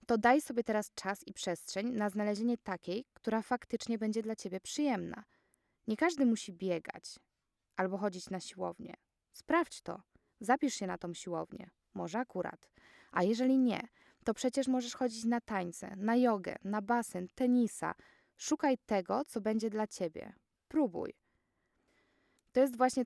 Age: 20-39